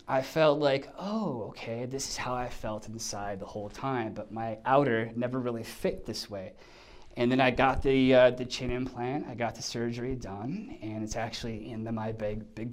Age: 20-39